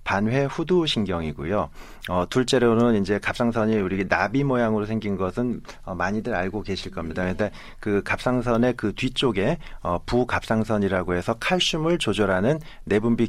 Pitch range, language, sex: 95-125 Hz, Korean, male